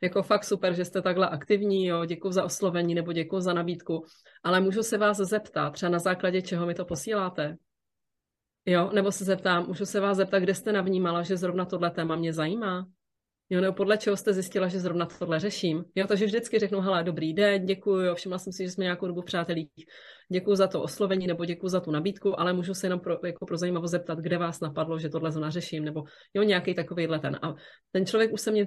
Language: Czech